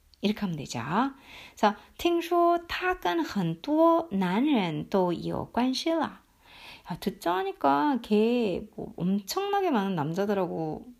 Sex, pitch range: female, 175-265 Hz